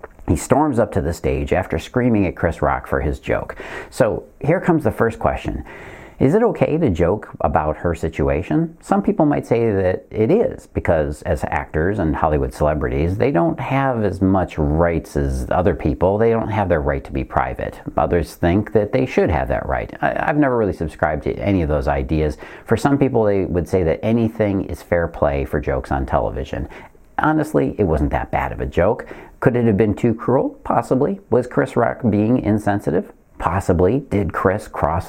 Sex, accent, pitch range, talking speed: male, American, 80-110 Hz, 195 wpm